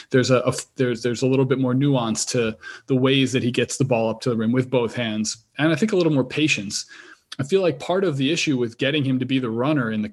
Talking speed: 285 wpm